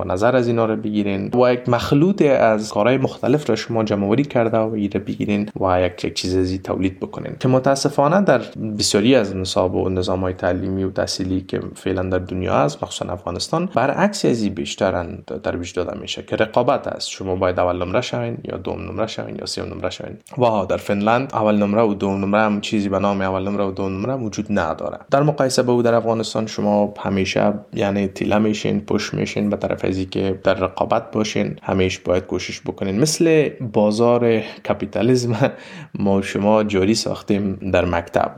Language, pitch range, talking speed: Persian, 95-120 Hz, 190 wpm